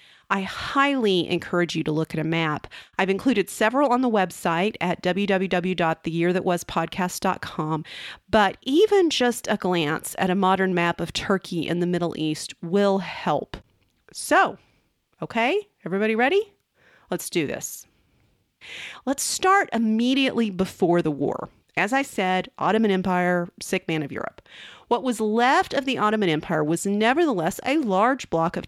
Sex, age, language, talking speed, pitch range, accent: female, 30-49, English, 145 wpm, 170-230 Hz, American